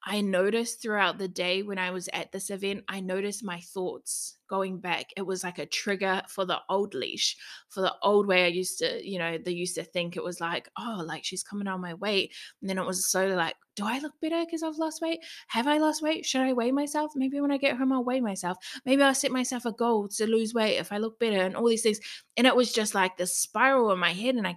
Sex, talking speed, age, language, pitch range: female, 265 wpm, 20-39, English, 185-250 Hz